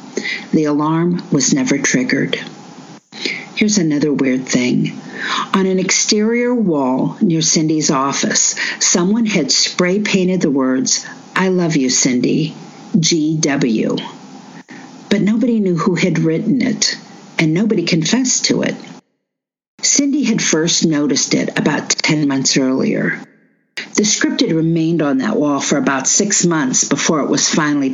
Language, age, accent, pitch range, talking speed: English, 50-69, American, 155-225 Hz, 135 wpm